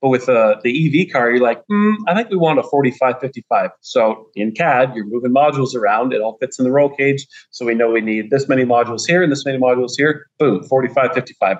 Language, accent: English, American